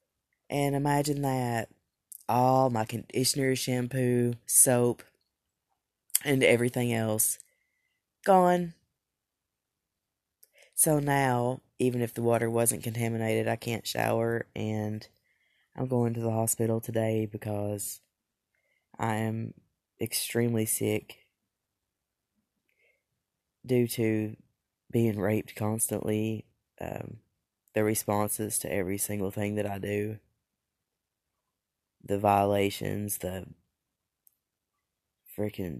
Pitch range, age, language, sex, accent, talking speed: 105-120 Hz, 20-39, English, female, American, 90 wpm